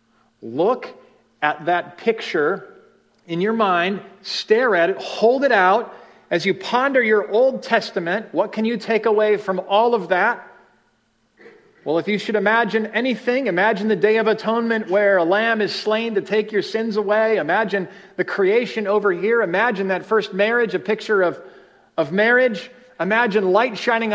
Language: English